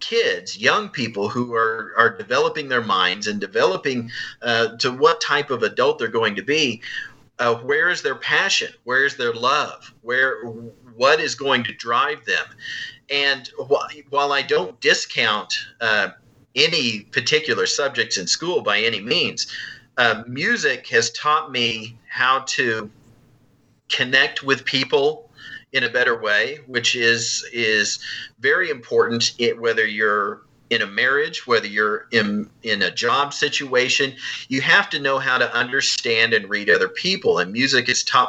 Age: 40-59